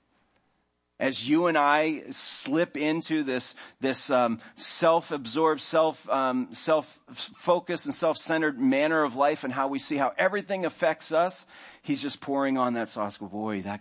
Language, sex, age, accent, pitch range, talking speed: English, male, 40-59, American, 95-120 Hz, 150 wpm